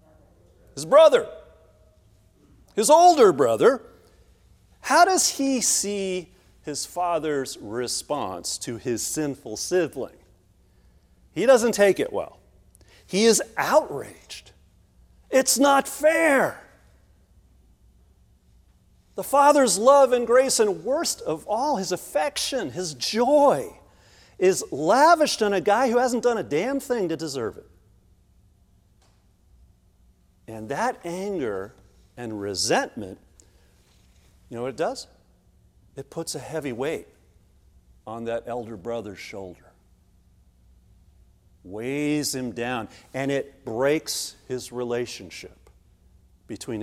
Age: 40-59